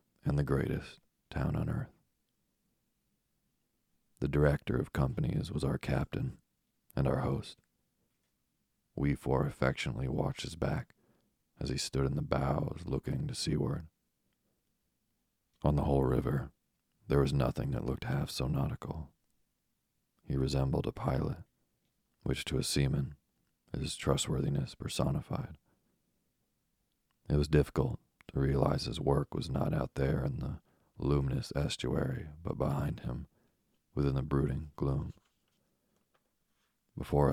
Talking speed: 125 wpm